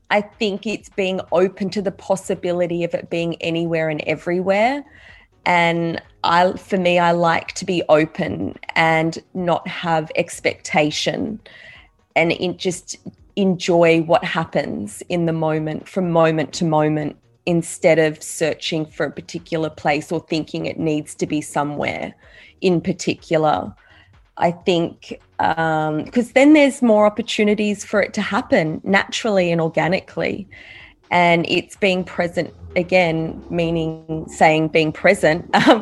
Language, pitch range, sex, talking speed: Italian, 160-190 Hz, female, 135 wpm